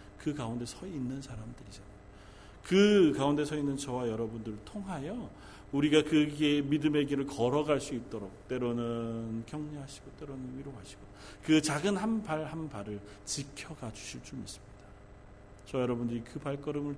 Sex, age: male, 40-59